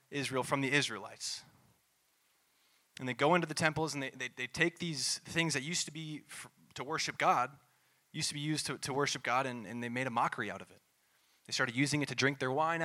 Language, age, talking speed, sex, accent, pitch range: English, 20-39, 230 wpm, male, American, 135-165 Hz